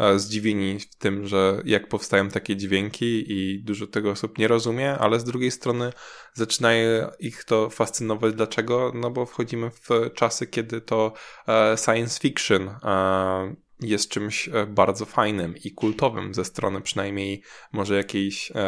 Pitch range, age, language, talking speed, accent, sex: 100-125 Hz, 10-29, Polish, 140 wpm, native, male